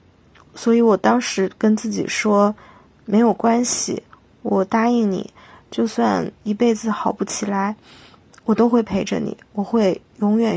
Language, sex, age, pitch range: Chinese, female, 20-39, 200-230 Hz